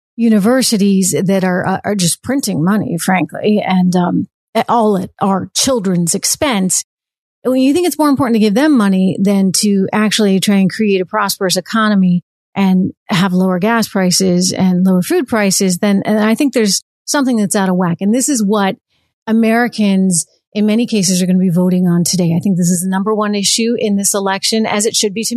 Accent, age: American, 40-59